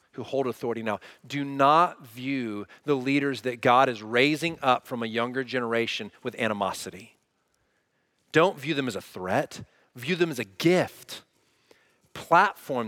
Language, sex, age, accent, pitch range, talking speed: English, male, 40-59, American, 175-255 Hz, 150 wpm